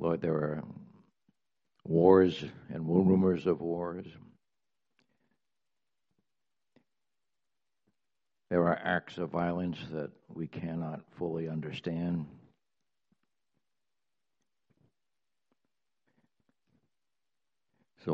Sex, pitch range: male, 80-90 Hz